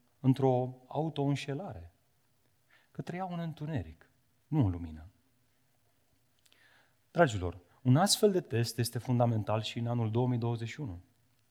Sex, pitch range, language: male, 110-150 Hz, Romanian